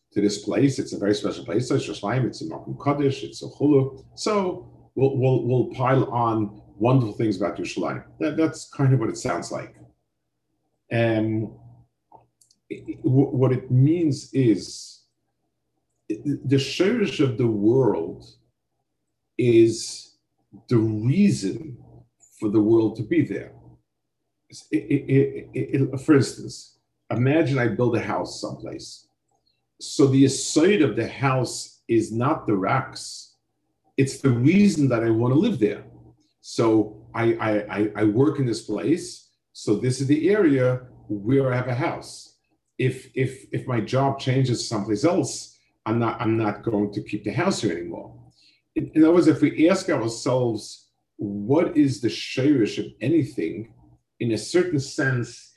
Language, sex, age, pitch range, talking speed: English, male, 50-69, 105-135 Hz, 150 wpm